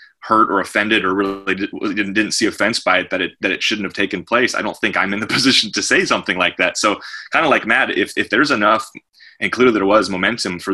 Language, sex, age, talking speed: English, male, 20-39, 255 wpm